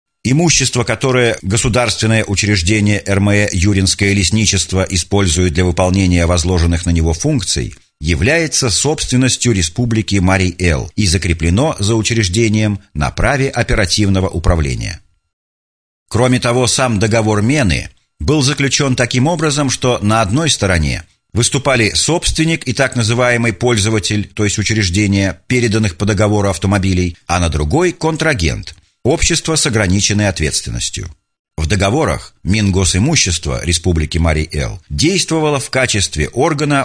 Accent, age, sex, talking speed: native, 50-69, male, 110 wpm